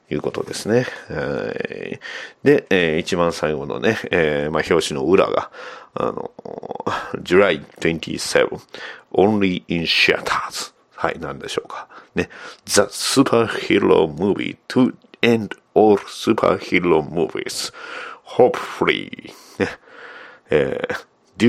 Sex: male